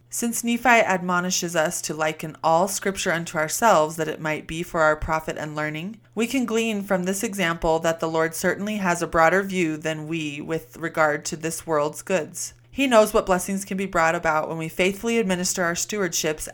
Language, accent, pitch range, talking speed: English, American, 155-190 Hz, 200 wpm